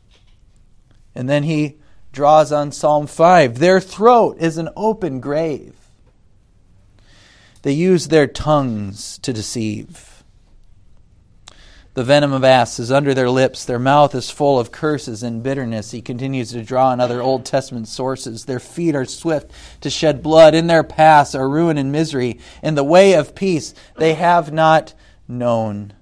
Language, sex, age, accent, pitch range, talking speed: English, male, 40-59, American, 105-145 Hz, 155 wpm